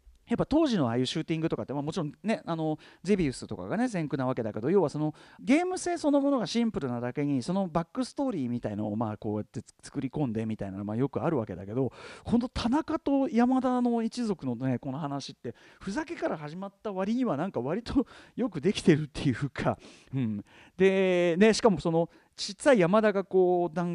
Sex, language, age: male, Japanese, 40-59